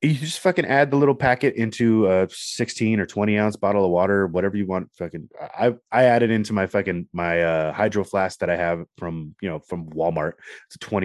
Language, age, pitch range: English, 30-49, 90-110 Hz